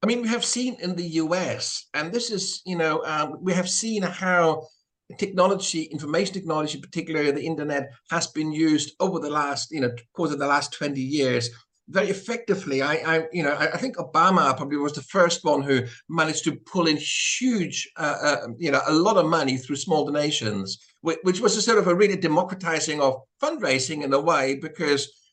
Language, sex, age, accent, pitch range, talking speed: English, male, 50-69, British, 150-185 Hz, 200 wpm